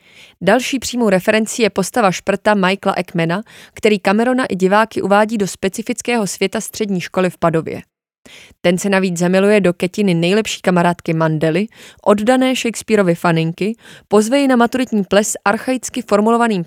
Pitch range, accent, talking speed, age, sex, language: 175-215 Hz, native, 140 wpm, 20-39, female, Czech